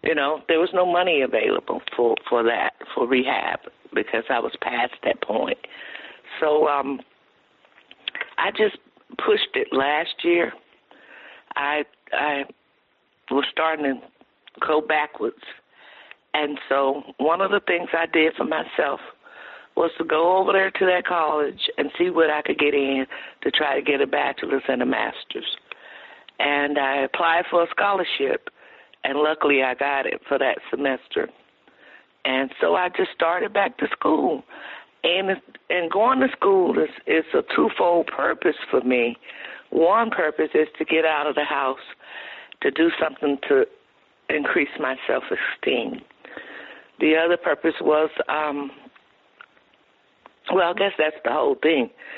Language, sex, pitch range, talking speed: English, female, 140-190 Hz, 150 wpm